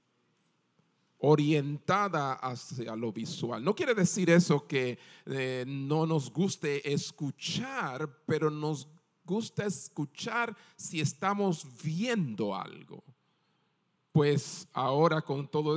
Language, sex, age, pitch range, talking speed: Spanish, male, 40-59, 140-180 Hz, 100 wpm